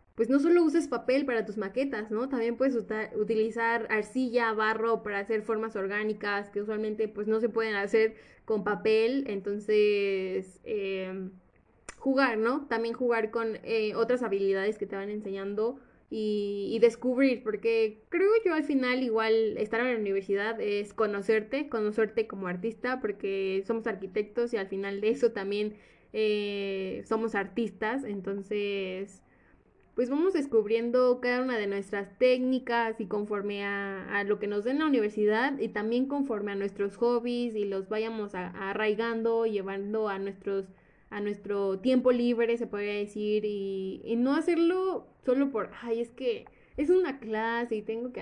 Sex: female